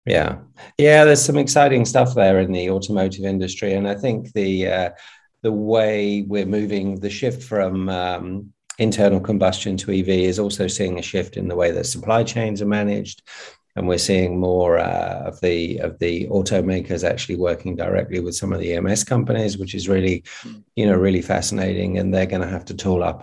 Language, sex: English, male